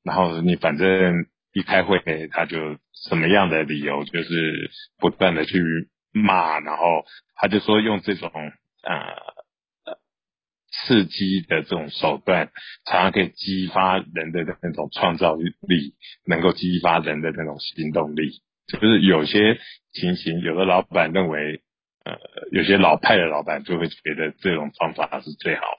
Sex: male